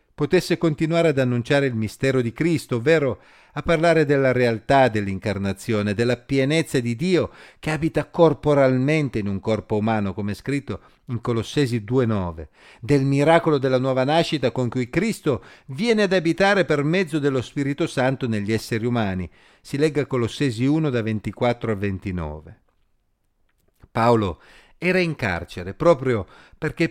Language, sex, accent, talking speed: Italian, male, native, 140 wpm